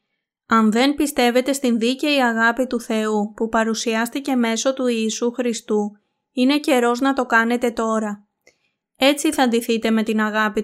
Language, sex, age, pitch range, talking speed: Greek, female, 20-39, 220-260 Hz, 145 wpm